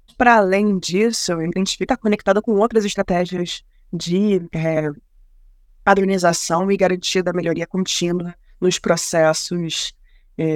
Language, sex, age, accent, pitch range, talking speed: Portuguese, female, 20-39, Brazilian, 155-190 Hz, 120 wpm